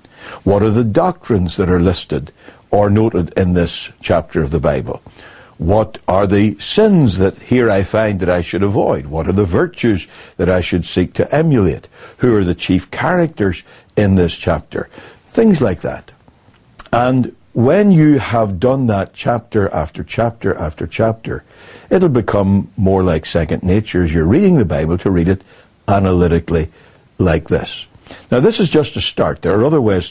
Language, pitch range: English, 90-120 Hz